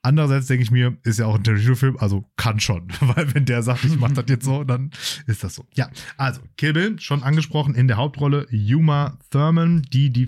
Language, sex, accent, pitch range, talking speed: German, male, German, 105-135 Hz, 215 wpm